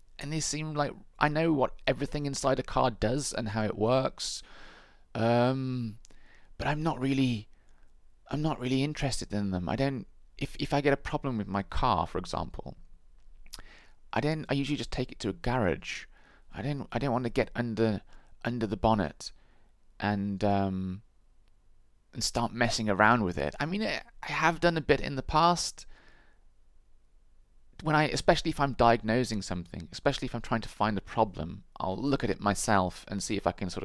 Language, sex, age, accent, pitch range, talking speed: English, male, 30-49, British, 95-135 Hz, 185 wpm